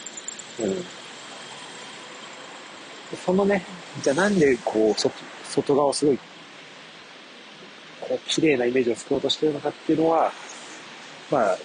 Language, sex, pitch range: Japanese, male, 135-195 Hz